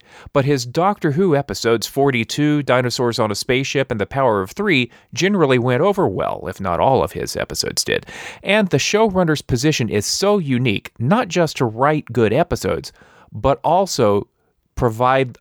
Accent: American